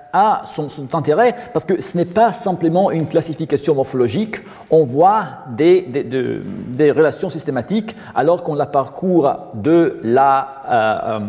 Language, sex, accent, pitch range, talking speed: French, male, French, 135-195 Hz, 150 wpm